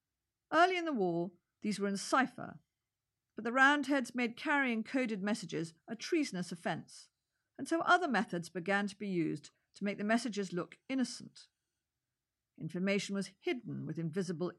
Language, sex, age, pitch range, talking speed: English, female, 50-69, 175-250 Hz, 150 wpm